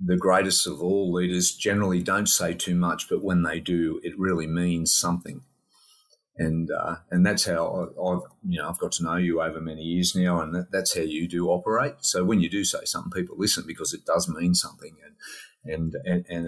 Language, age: English, 40-59